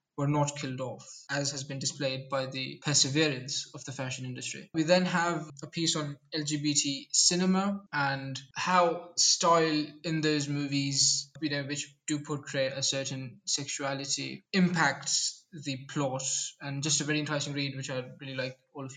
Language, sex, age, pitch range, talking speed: English, male, 20-39, 140-160 Hz, 165 wpm